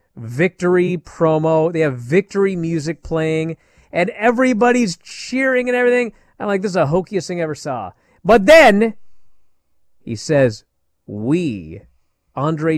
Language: English